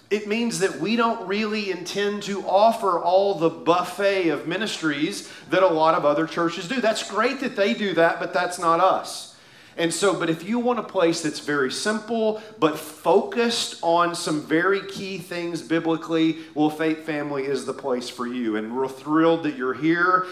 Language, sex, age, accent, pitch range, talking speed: English, male, 40-59, American, 150-195 Hz, 190 wpm